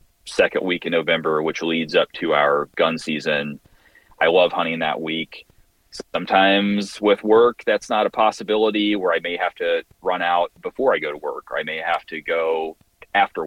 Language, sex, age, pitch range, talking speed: English, male, 30-49, 80-100 Hz, 185 wpm